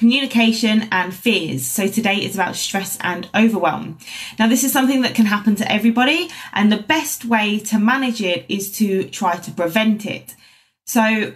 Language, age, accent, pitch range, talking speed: English, 20-39, British, 180-225 Hz, 175 wpm